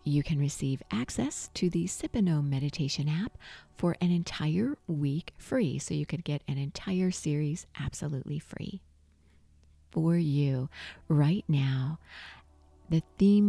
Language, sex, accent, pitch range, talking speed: English, female, American, 135-175 Hz, 130 wpm